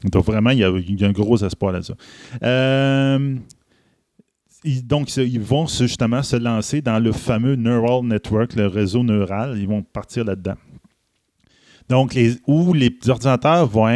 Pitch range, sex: 105-135 Hz, male